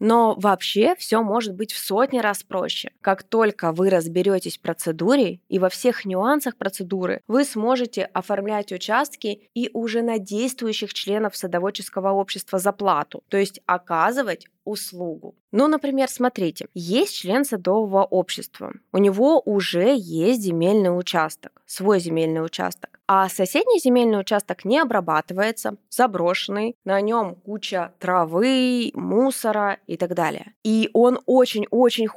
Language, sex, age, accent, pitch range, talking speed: Russian, female, 20-39, native, 185-250 Hz, 130 wpm